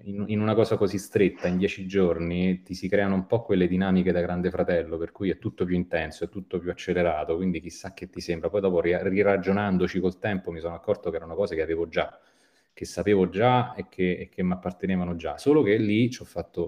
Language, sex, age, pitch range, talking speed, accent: Italian, male, 30-49, 85-95 Hz, 225 wpm, native